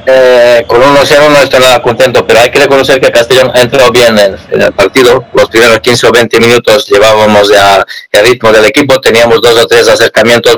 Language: Spanish